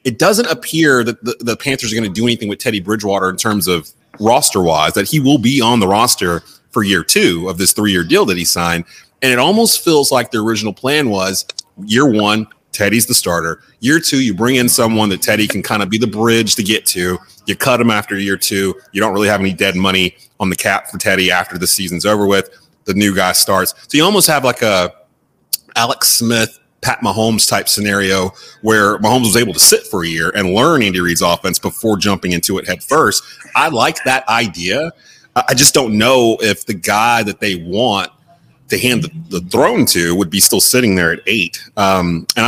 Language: English